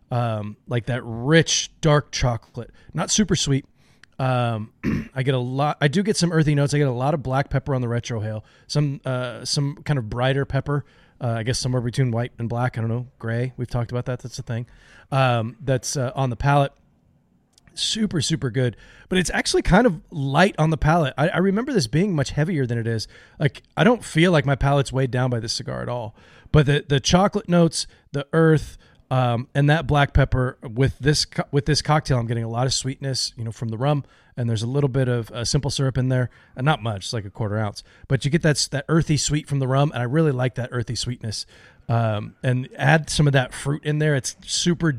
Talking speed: 230 wpm